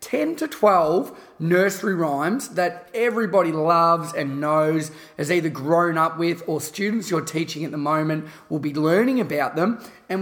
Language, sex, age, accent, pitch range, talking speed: English, male, 30-49, Australian, 155-200 Hz, 165 wpm